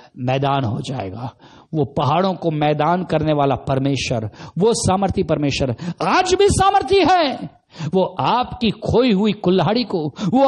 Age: 50-69